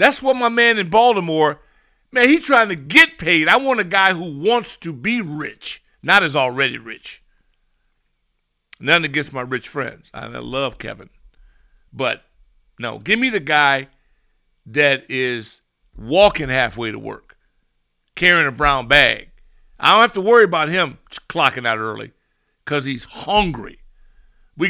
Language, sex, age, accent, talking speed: English, male, 50-69, American, 155 wpm